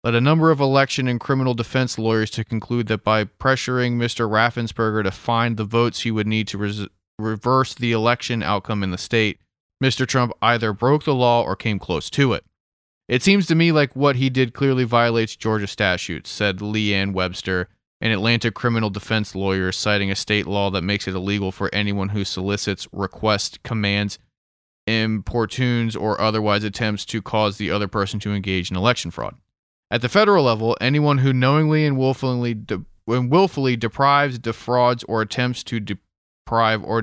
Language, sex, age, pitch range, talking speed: English, male, 30-49, 100-125 Hz, 175 wpm